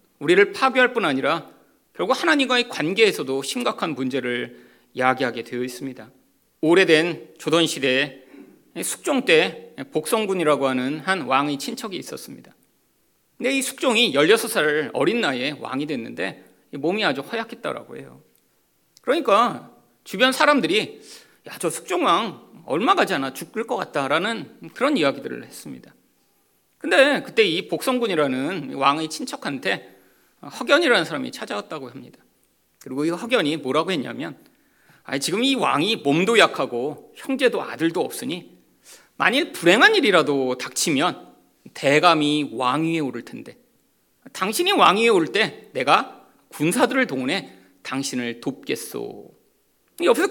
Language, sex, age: Korean, male, 40-59